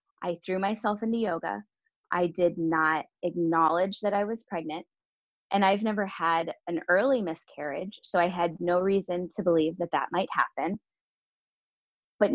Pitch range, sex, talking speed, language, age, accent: 165-210 Hz, female, 155 wpm, English, 20-39, American